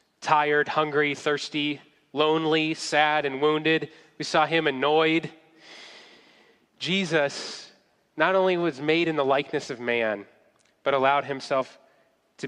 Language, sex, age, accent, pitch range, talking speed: English, male, 20-39, American, 125-160 Hz, 120 wpm